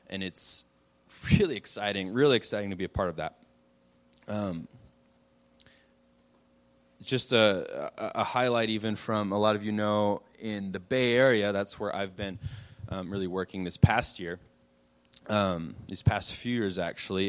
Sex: male